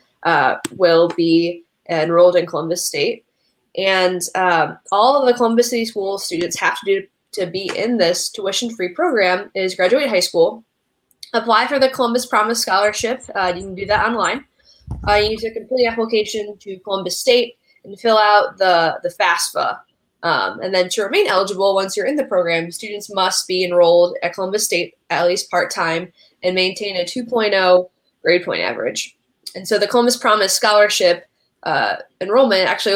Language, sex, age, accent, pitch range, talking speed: English, female, 10-29, American, 180-225 Hz, 175 wpm